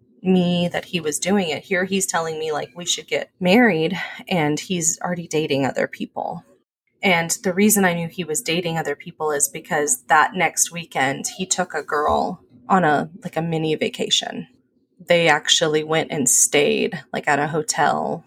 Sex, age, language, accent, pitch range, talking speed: female, 20-39, English, American, 150-185 Hz, 180 wpm